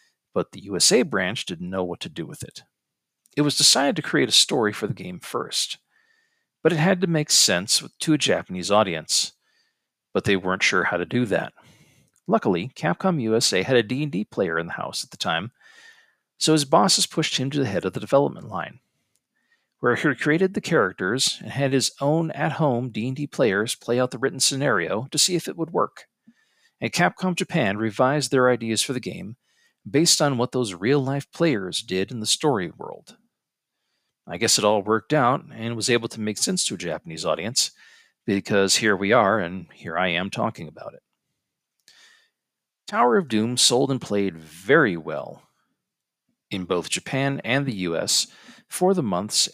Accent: American